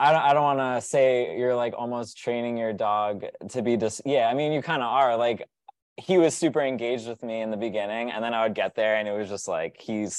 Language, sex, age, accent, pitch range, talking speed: English, male, 20-39, American, 105-125 Hz, 270 wpm